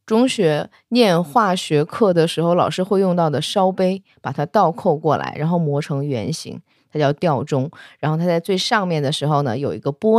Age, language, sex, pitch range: 20-39, Chinese, female, 155-220 Hz